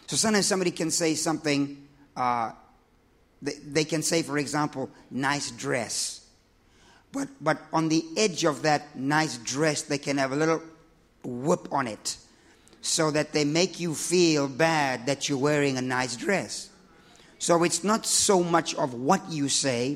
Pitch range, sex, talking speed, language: 140-170 Hz, male, 160 wpm, English